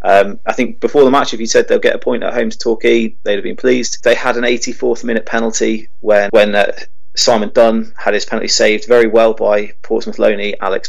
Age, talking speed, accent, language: 30-49, 230 wpm, British, English